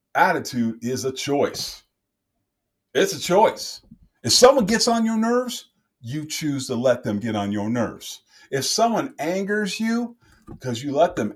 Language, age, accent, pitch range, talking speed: English, 30-49, American, 105-175 Hz, 160 wpm